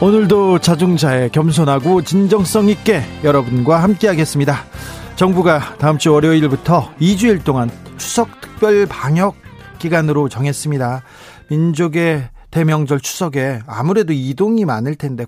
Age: 40-59